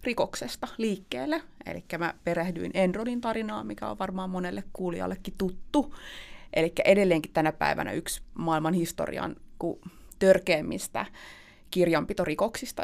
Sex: female